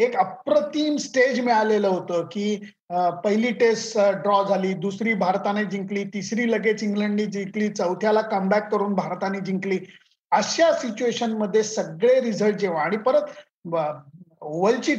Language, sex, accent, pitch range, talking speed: Marathi, male, native, 190-245 Hz, 120 wpm